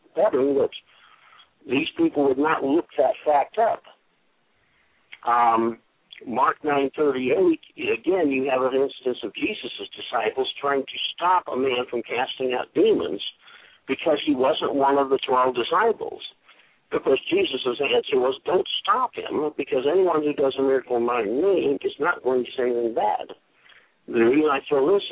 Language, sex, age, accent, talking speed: English, male, 60-79, American, 160 wpm